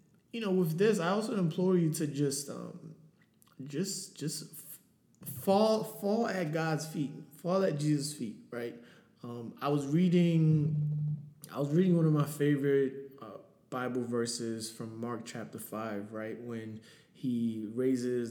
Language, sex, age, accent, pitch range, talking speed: English, male, 20-39, American, 125-175 Hz, 150 wpm